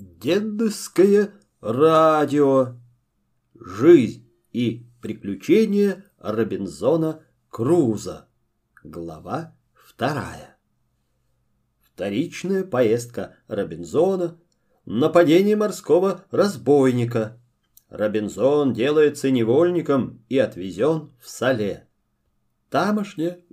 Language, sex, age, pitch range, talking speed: Russian, male, 40-59, 120-195 Hz, 60 wpm